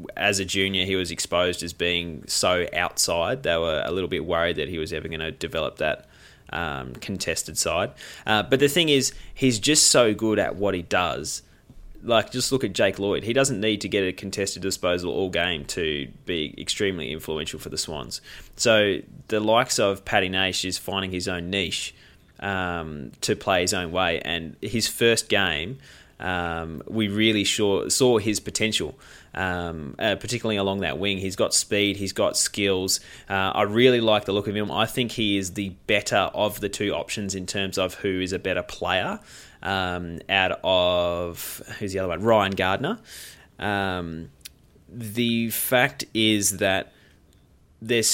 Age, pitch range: 20-39, 90-110 Hz